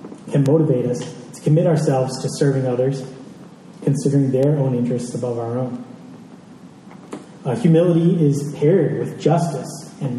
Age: 20-39